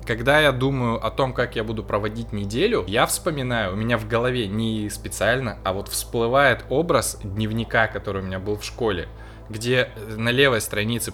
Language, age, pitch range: Russian, 20-39, 105-130 Hz